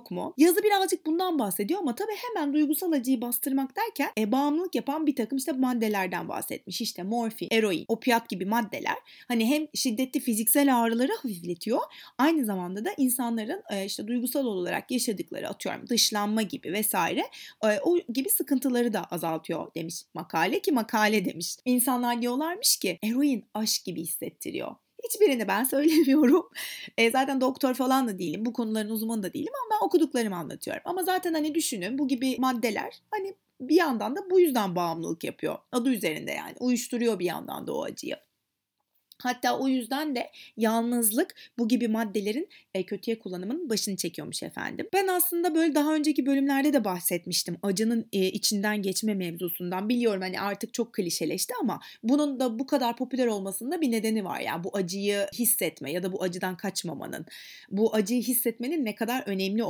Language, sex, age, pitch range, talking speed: Turkish, female, 30-49, 210-285 Hz, 165 wpm